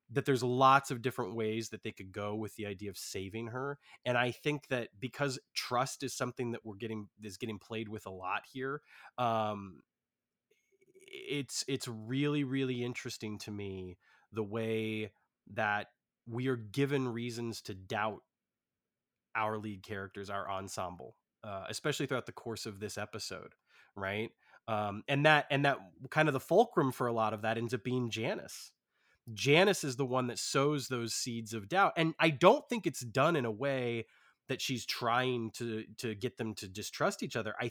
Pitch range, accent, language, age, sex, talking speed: 110-135 Hz, American, English, 20-39, male, 180 wpm